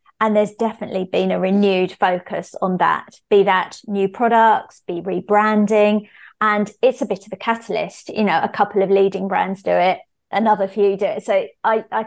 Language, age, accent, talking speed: English, 30-49, British, 190 wpm